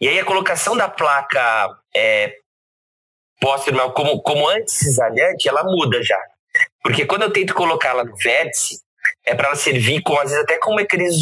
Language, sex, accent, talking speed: Portuguese, male, Brazilian, 160 wpm